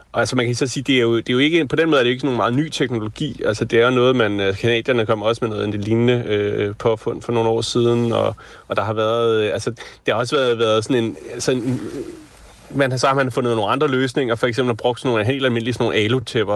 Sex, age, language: male, 30-49, Danish